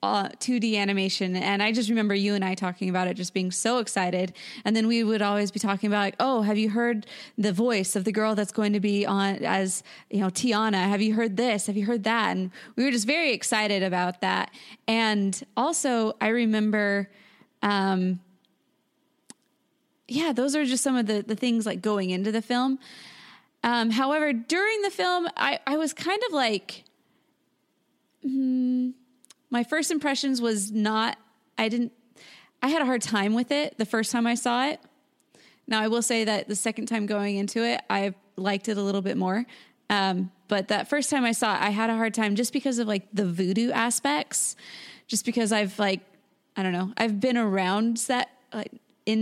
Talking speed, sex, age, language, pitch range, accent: 200 wpm, female, 20-39, English, 200-255 Hz, American